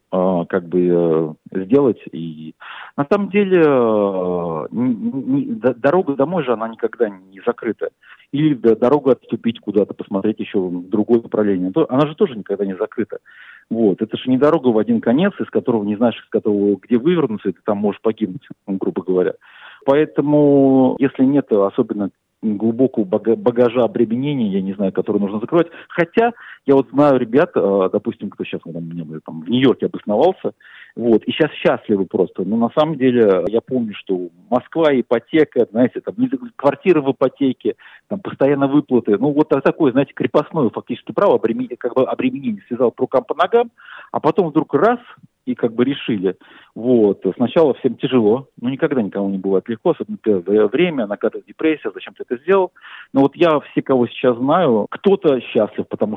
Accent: native